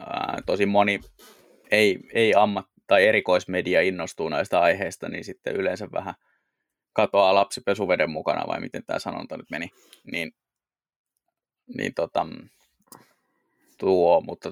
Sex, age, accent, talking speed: male, 20-39, native, 120 wpm